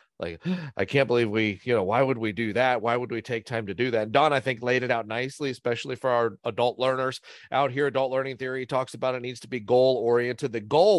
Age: 40-59